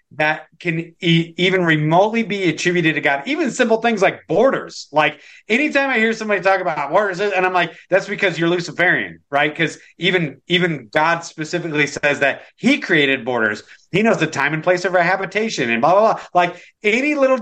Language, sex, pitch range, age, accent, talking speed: English, male, 145-205 Hz, 30-49, American, 195 wpm